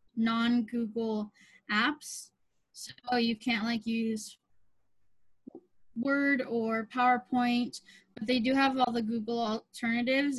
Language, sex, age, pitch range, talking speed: English, female, 10-29, 230-265 Hz, 105 wpm